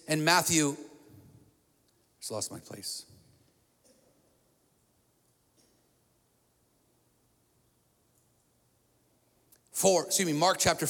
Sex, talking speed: male, 65 wpm